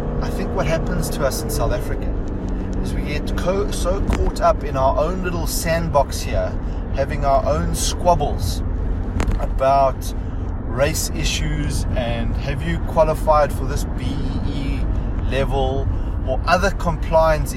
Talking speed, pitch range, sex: 135 wpm, 85-100 Hz, male